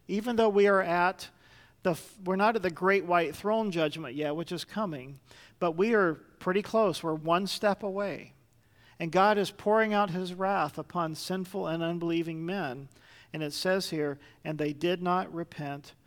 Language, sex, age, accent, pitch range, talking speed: English, male, 40-59, American, 155-190 Hz, 180 wpm